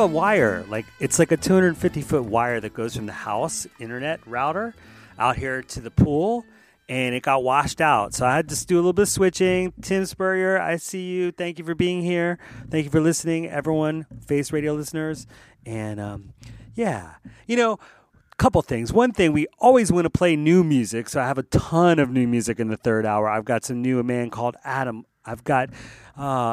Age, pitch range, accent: 30-49, 120-165 Hz, American